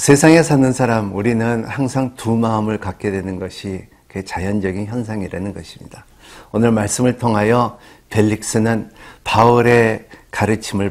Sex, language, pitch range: male, Korean, 100-140 Hz